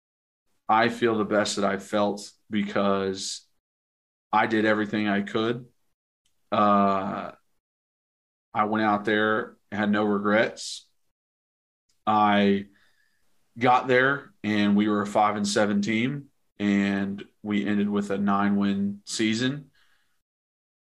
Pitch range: 100-115 Hz